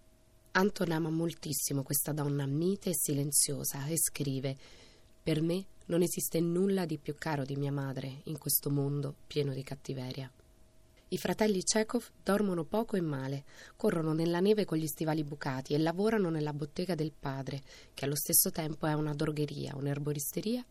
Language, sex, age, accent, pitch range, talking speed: Italian, female, 20-39, native, 140-185 Hz, 160 wpm